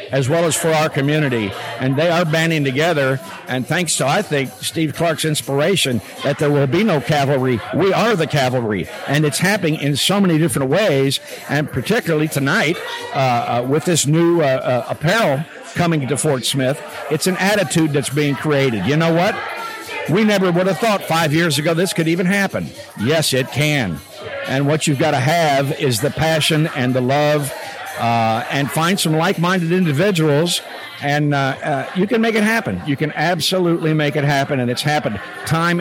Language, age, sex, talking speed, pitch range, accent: English, 60-79, male, 190 wpm, 135-170 Hz, American